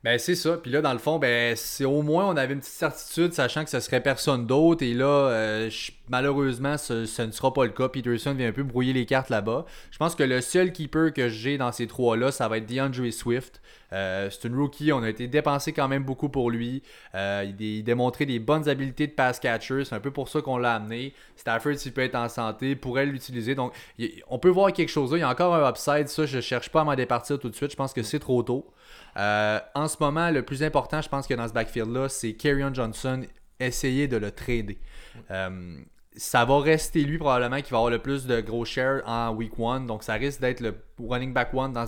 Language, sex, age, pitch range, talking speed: French, male, 20-39, 115-145 Hz, 250 wpm